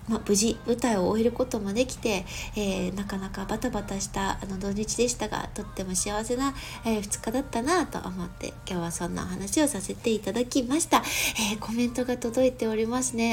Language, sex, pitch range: Japanese, female, 225-310 Hz